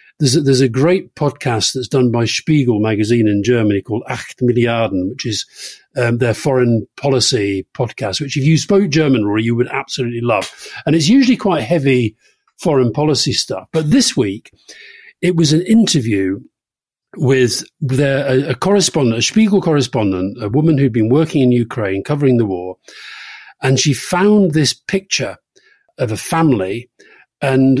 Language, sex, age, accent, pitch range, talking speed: English, male, 50-69, British, 110-150 Hz, 160 wpm